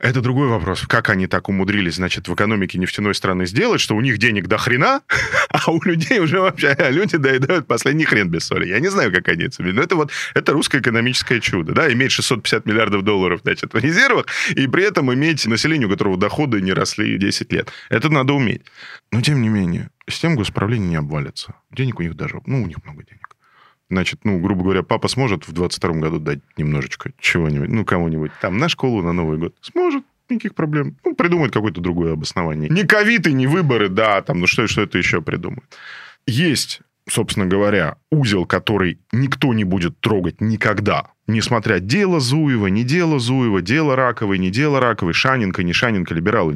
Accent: native